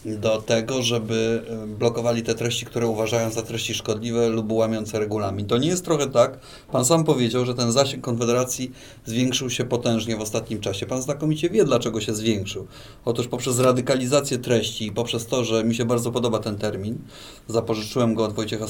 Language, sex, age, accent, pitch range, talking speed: Polish, male, 30-49, native, 110-120 Hz, 180 wpm